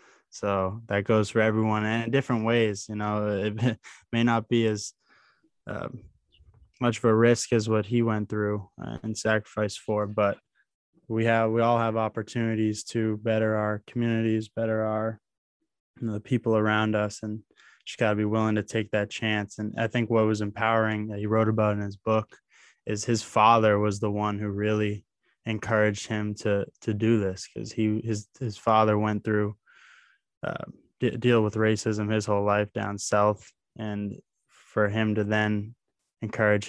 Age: 10-29